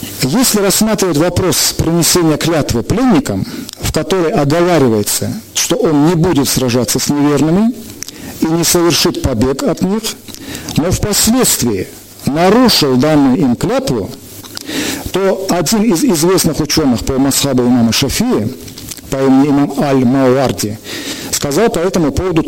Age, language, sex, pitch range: 50-69, Russian, male, 125-170 Hz